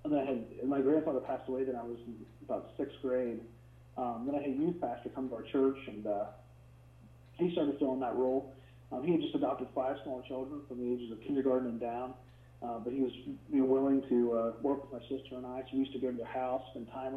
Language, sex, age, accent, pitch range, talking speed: English, male, 30-49, American, 115-135 Hz, 260 wpm